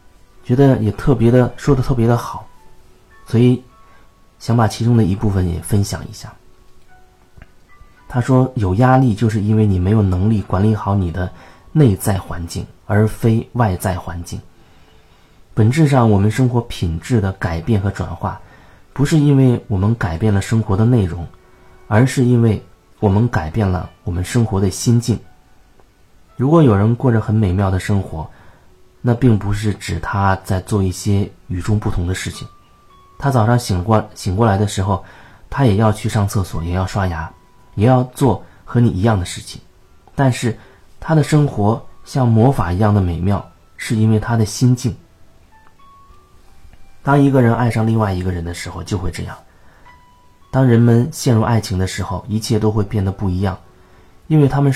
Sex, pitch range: male, 95-120 Hz